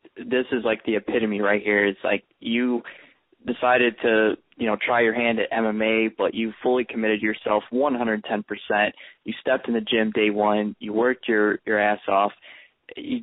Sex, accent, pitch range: male, American, 105-120 Hz